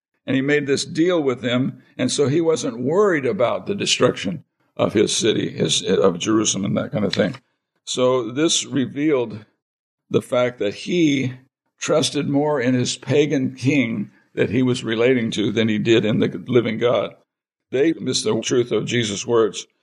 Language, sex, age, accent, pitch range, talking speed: English, male, 60-79, American, 120-145 Hz, 175 wpm